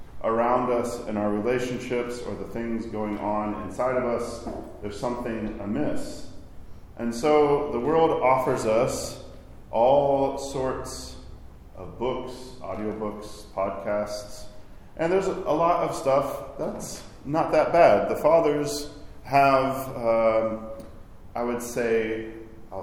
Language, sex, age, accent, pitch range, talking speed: English, male, 40-59, American, 110-135 Hz, 130 wpm